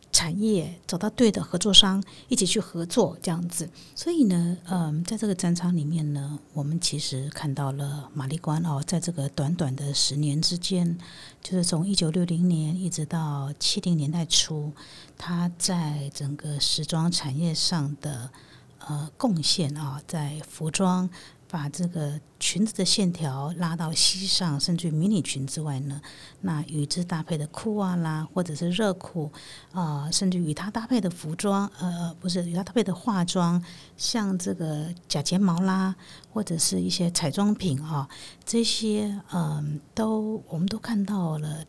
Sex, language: female, Chinese